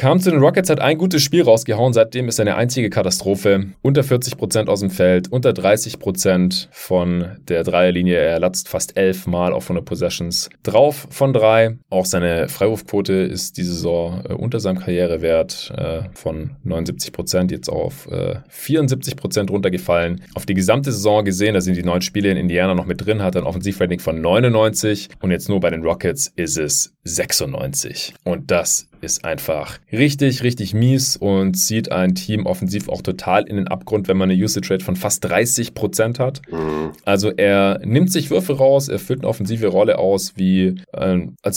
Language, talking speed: German, 180 wpm